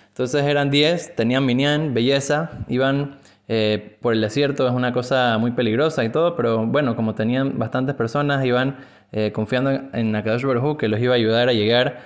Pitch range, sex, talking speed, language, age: 115-150 Hz, male, 185 wpm, Spanish, 20-39